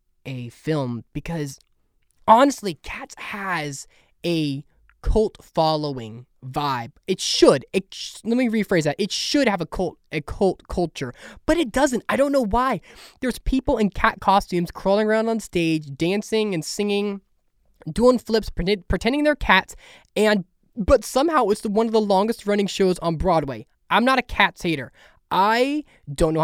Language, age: English, 20-39